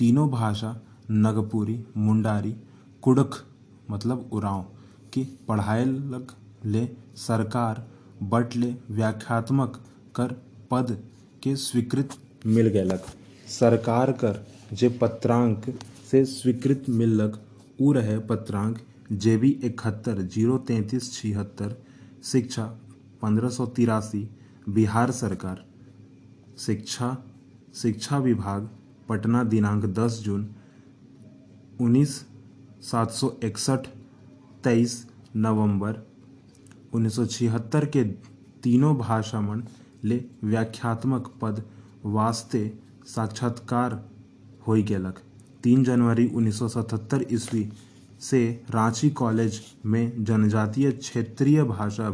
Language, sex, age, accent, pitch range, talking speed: Hindi, male, 30-49, native, 110-125 Hz, 85 wpm